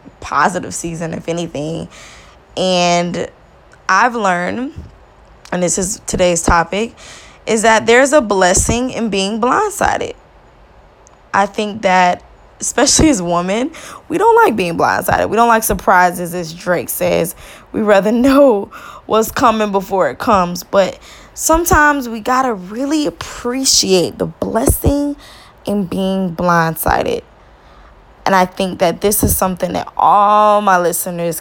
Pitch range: 180-235 Hz